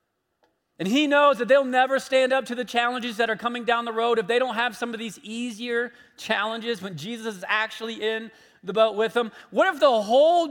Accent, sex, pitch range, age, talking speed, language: American, male, 225-255 Hz, 40-59, 225 wpm, English